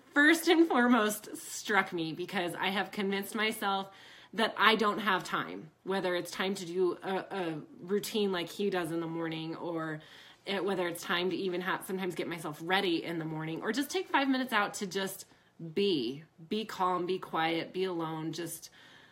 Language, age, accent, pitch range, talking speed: English, 20-39, American, 165-200 Hz, 190 wpm